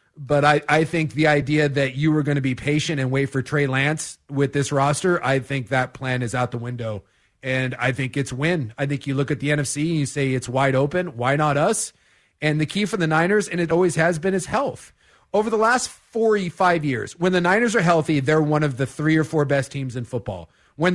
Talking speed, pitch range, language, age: 245 wpm, 135-175 Hz, English, 30-49